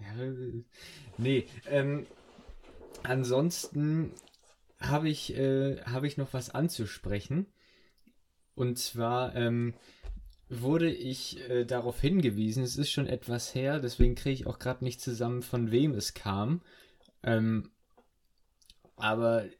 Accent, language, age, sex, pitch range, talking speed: German, German, 20-39, male, 110-130 Hz, 115 wpm